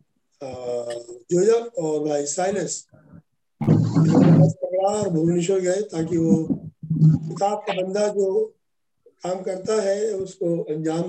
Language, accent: Hindi, native